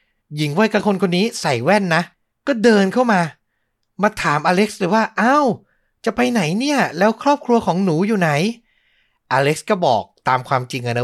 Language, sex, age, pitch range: Thai, male, 30-49, 145-215 Hz